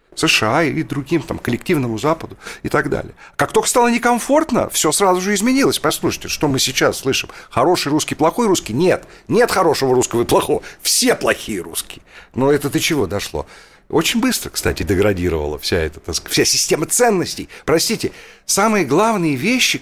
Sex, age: male, 50-69